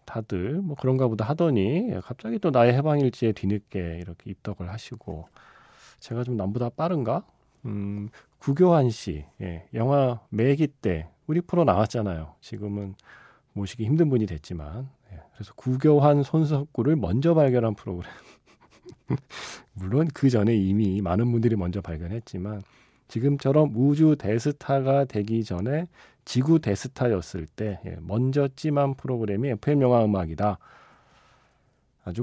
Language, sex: Korean, male